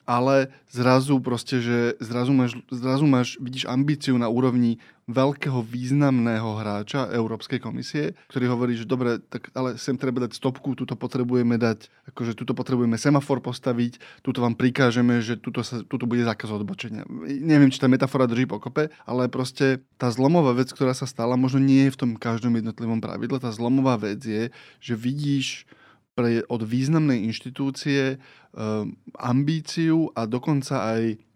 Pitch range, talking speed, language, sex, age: 120-135 Hz, 160 wpm, Slovak, male, 20-39